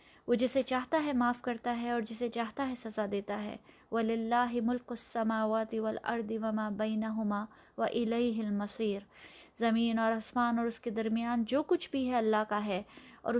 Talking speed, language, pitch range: 185 wpm, Urdu, 225-300 Hz